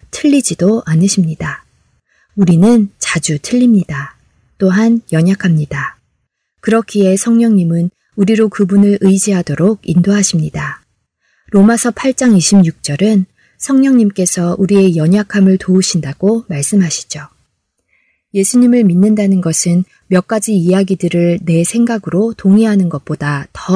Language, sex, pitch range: Korean, female, 170-210 Hz